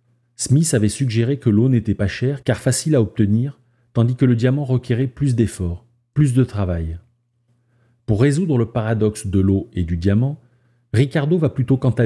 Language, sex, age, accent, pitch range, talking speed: French, male, 40-59, French, 105-125 Hz, 180 wpm